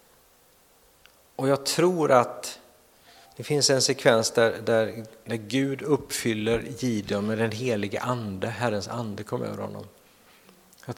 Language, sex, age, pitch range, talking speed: Swedish, male, 50-69, 110-135 Hz, 130 wpm